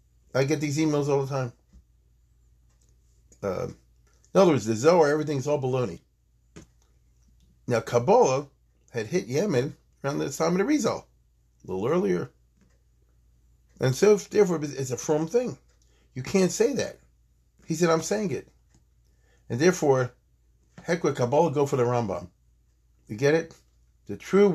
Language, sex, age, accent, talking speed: English, male, 40-59, American, 145 wpm